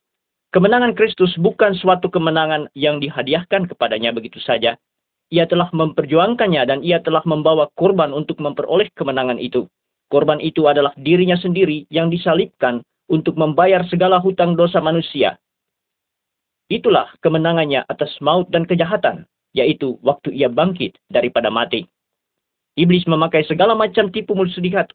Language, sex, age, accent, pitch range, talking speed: Indonesian, male, 40-59, native, 135-175 Hz, 125 wpm